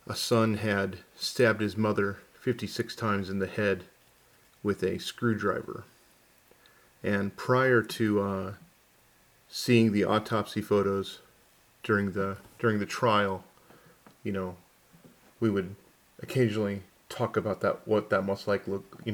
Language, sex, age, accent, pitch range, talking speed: English, male, 40-59, American, 105-125 Hz, 130 wpm